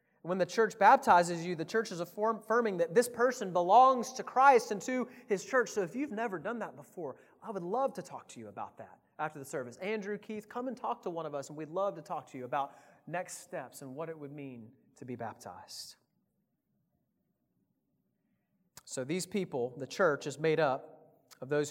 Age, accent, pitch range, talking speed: 30-49, American, 160-220 Hz, 205 wpm